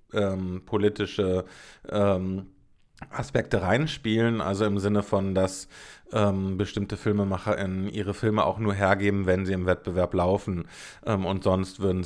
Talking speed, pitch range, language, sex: 135 wpm, 100-120 Hz, German, male